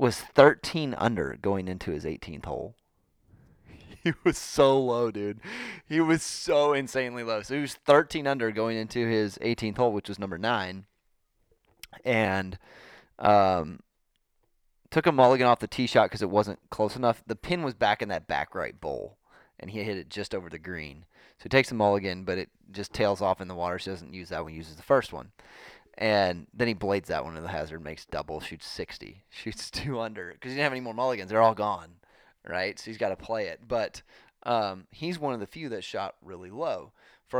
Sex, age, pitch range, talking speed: male, 30-49, 100-135 Hz, 210 wpm